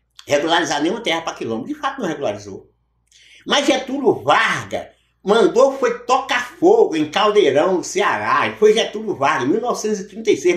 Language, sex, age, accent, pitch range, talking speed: Portuguese, male, 50-69, Brazilian, 200-325 Hz, 150 wpm